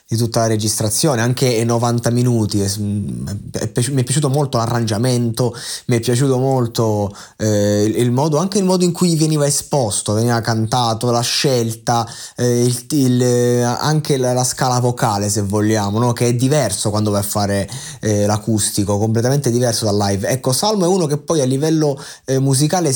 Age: 20-39